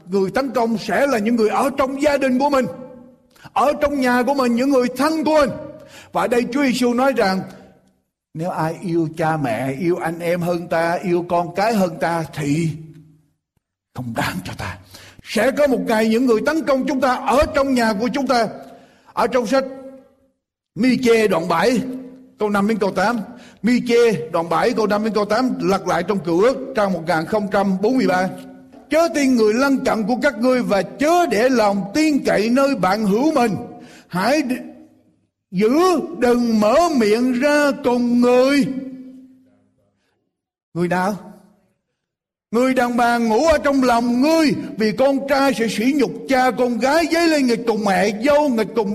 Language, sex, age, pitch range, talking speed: Vietnamese, male, 60-79, 185-260 Hz, 180 wpm